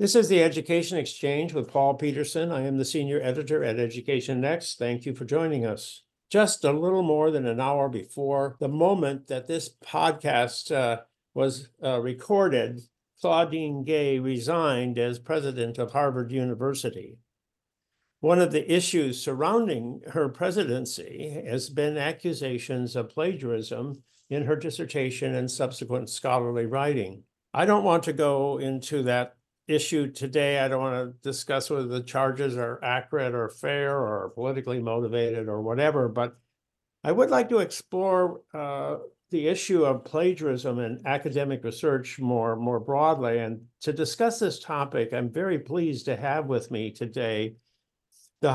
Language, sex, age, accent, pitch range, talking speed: English, male, 60-79, American, 125-155 Hz, 150 wpm